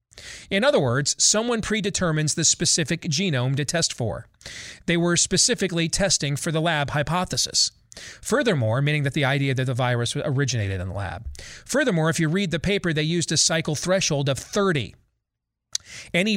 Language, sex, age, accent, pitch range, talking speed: English, male, 40-59, American, 135-175 Hz, 165 wpm